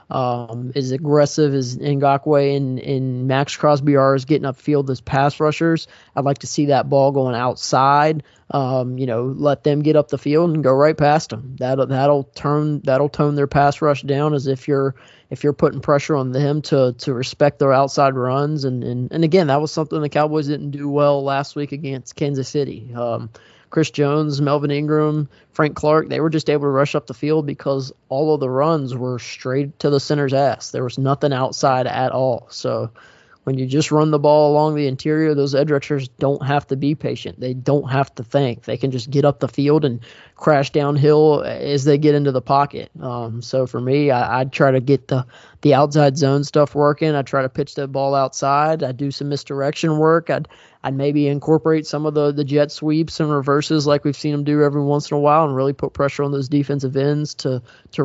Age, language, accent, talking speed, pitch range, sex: 20-39, English, American, 220 wpm, 135-150 Hz, male